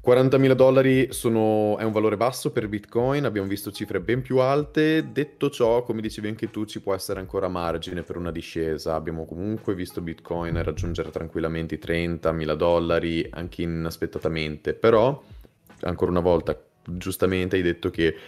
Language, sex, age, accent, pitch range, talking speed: Italian, male, 20-39, native, 80-110 Hz, 150 wpm